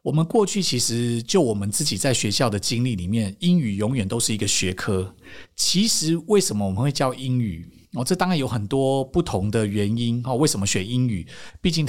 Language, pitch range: Chinese, 105-150 Hz